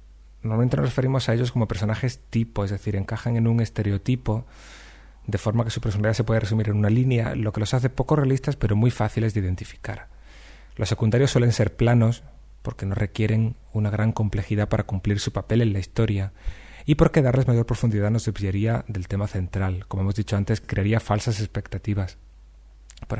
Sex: male